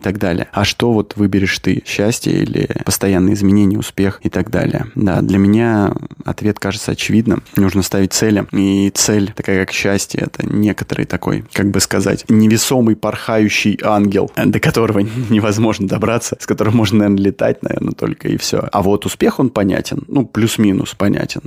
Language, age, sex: Russian, 20-39, male